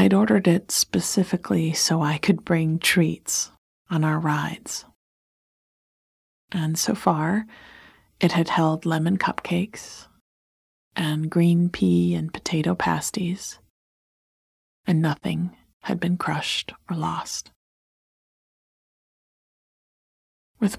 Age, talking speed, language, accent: 30-49, 100 wpm, English, American